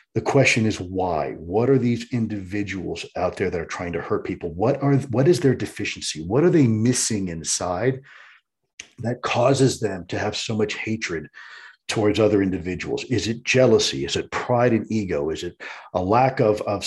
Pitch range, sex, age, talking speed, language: 95-120 Hz, male, 40-59, 185 wpm, English